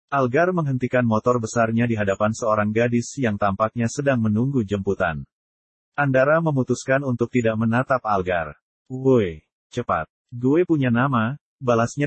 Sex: male